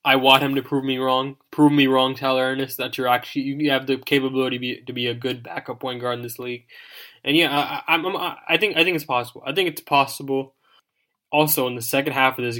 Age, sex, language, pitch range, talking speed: 20-39, male, English, 125-140 Hz, 250 wpm